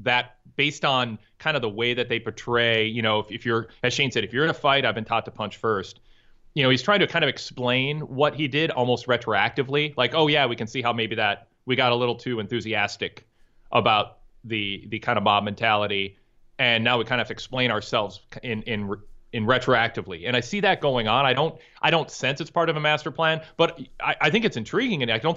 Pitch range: 110-140 Hz